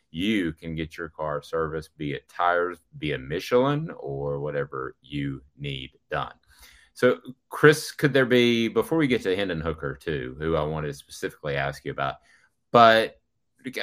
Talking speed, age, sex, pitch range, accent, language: 165 wpm, 30-49, male, 75-115 Hz, American, English